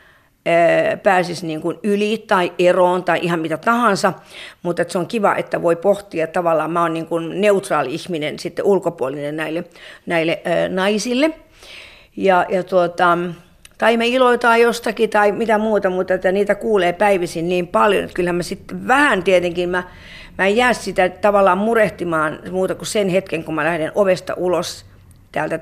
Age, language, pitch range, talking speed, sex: 50-69, Finnish, 170-205 Hz, 165 wpm, female